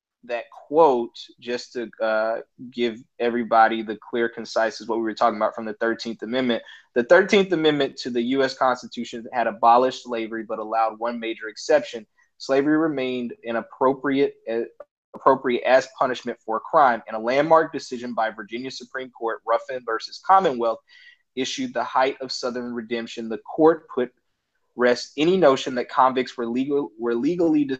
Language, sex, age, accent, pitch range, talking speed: English, male, 20-39, American, 115-140 Hz, 160 wpm